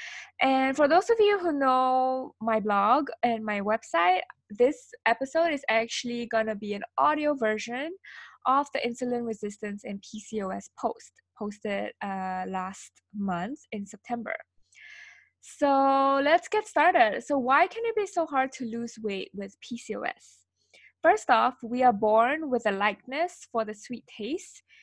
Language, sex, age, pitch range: English, female, 10-29, 215-275 Hz